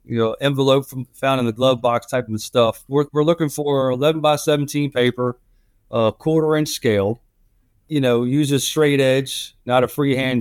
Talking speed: 195 wpm